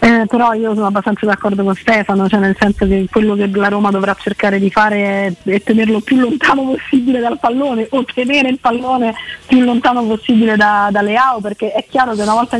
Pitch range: 205-240 Hz